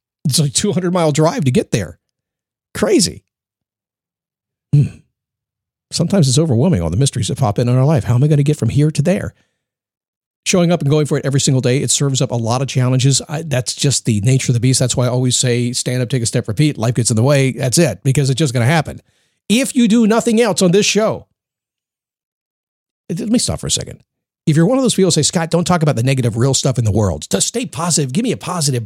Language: English